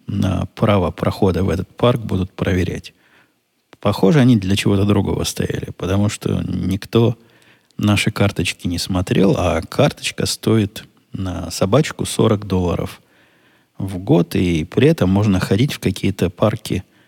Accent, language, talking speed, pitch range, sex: native, Russian, 135 wpm, 90-110 Hz, male